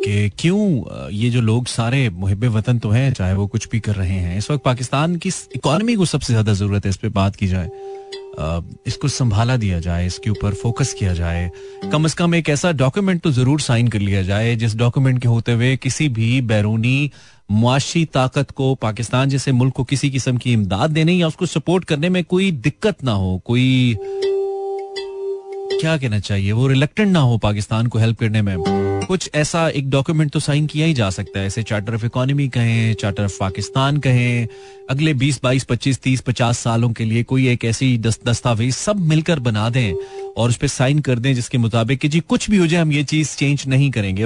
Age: 30-49